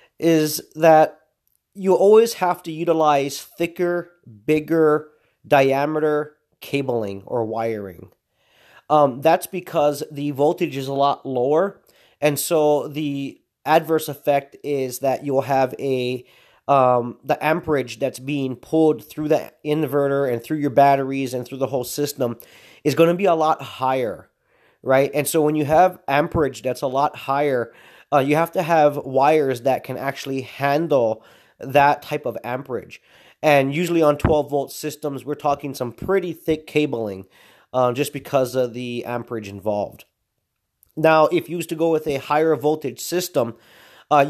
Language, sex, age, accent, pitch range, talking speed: English, male, 30-49, American, 130-155 Hz, 155 wpm